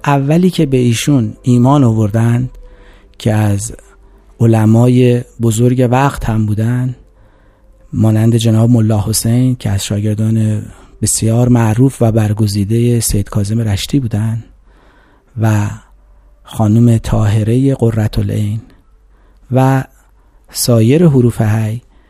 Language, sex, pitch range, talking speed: Persian, male, 110-135 Hz, 100 wpm